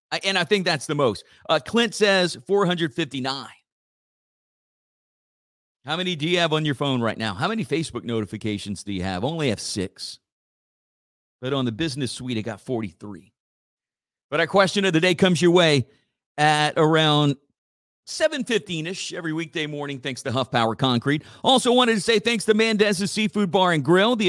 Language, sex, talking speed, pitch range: English, male, 175 wpm, 150-200 Hz